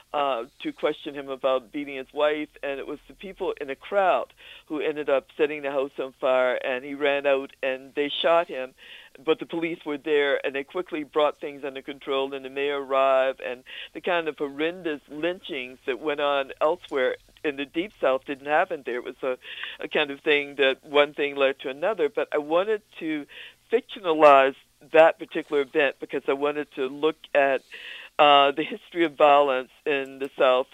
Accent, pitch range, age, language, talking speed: American, 140-170 Hz, 60-79, English, 195 wpm